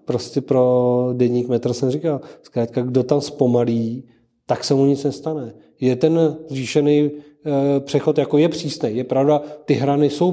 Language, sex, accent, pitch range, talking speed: Czech, male, native, 130-150 Hz, 165 wpm